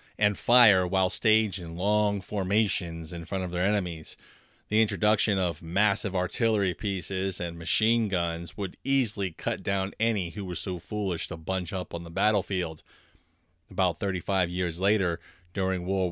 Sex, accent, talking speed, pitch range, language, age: male, American, 155 wpm, 90-110 Hz, English, 30-49